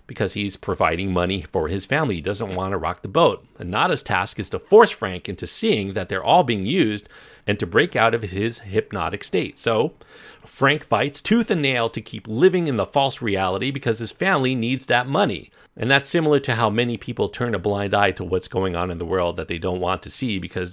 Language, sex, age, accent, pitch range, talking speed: English, male, 40-59, American, 95-130 Hz, 230 wpm